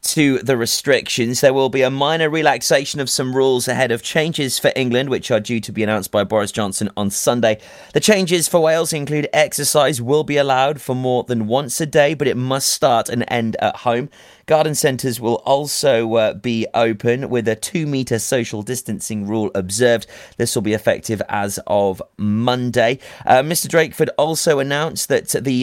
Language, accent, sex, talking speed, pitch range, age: English, British, male, 185 wpm, 110-145 Hz, 30-49